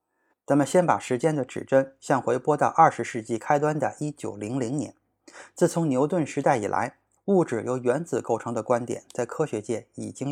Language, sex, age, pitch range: Chinese, male, 20-39, 120-160 Hz